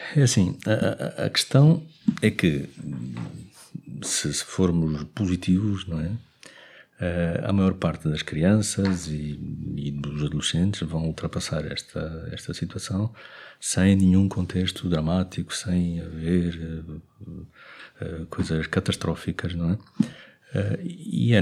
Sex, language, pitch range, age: male, English, 85-110 Hz, 50-69